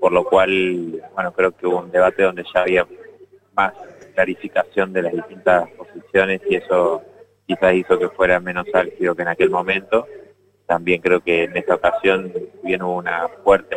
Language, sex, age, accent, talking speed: Spanish, male, 20-39, Argentinian, 175 wpm